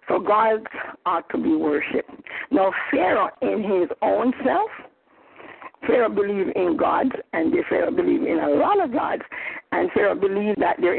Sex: female